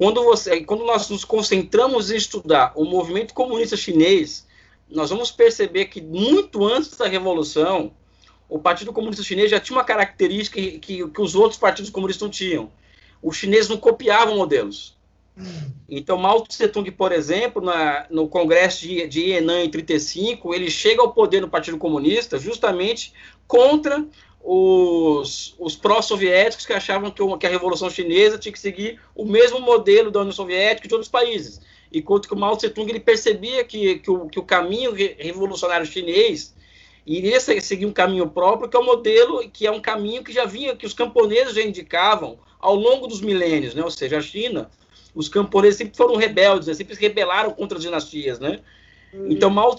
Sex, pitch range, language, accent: male, 180-245 Hz, Chinese, Brazilian